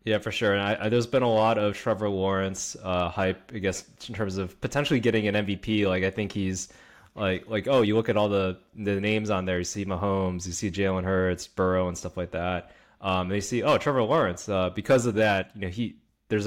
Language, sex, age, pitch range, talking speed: English, male, 20-39, 95-115 Hz, 240 wpm